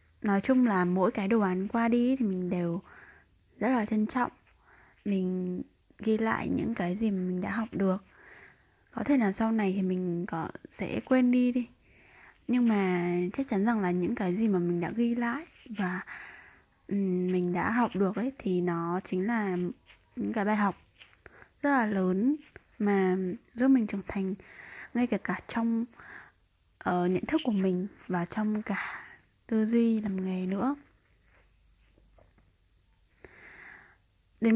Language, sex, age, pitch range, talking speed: Vietnamese, female, 20-39, 185-235 Hz, 160 wpm